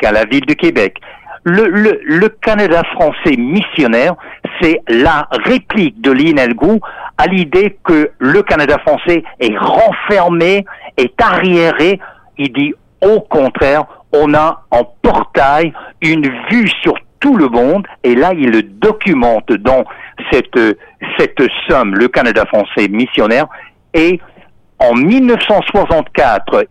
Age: 60-79